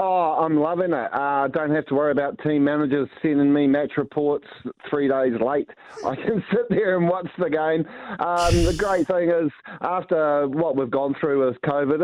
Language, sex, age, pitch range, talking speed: English, male, 30-49, 125-150 Hz, 195 wpm